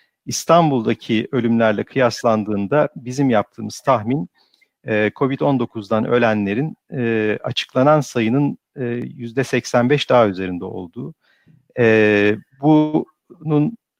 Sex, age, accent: male, 50-69, native